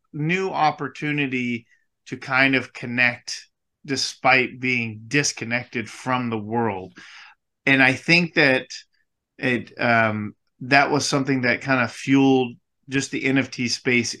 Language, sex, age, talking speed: English, male, 30-49, 125 wpm